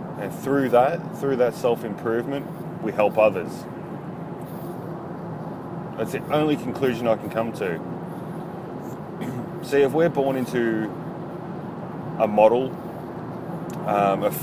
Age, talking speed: 30-49, 110 wpm